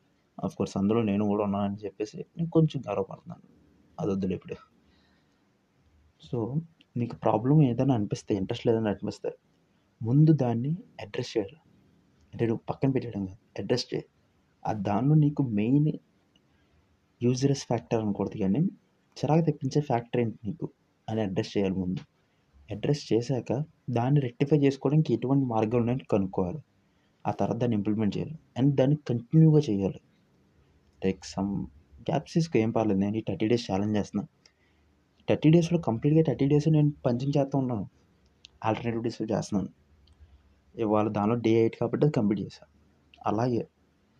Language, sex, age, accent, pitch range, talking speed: Telugu, male, 30-49, native, 95-140 Hz, 130 wpm